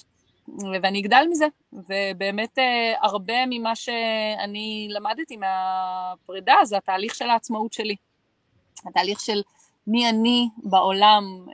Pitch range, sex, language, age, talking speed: 195-260 Hz, female, Hebrew, 30-49, 100 wpm